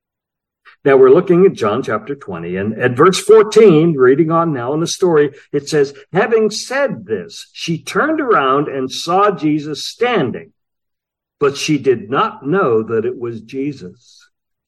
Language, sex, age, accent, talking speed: English, male, 60-79, American, 155 wpm